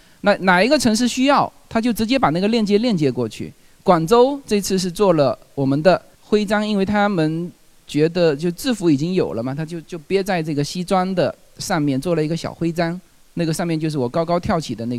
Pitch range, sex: 140-210 Hz, male